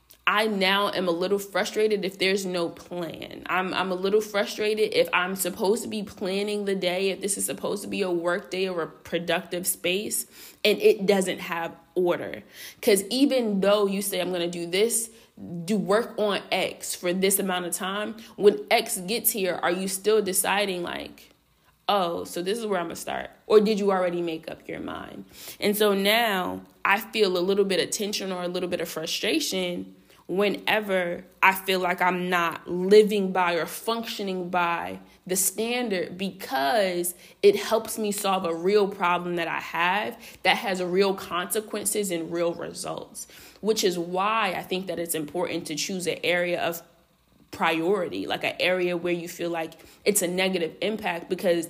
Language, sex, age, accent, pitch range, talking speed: English, female, 20-39, American, 175-205 Hz, 185 wpm